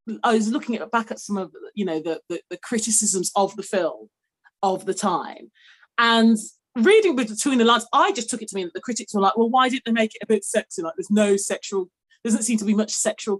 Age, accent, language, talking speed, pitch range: 30-49, British, English, 245 wpm, 200-250 Hz